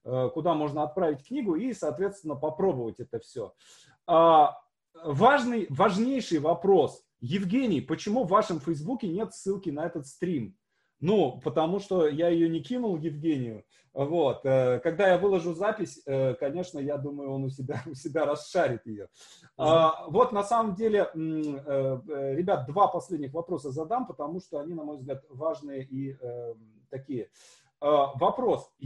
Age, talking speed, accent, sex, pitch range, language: 30-49, 125 wpm, native, male, 145-205 Hz, Russian